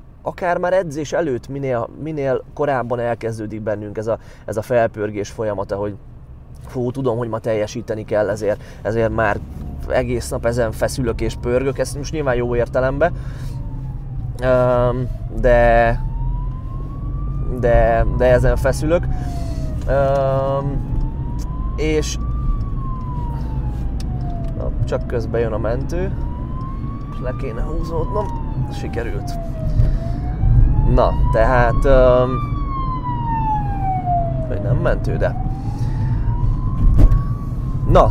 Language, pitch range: Hungarian, 115-135 Hz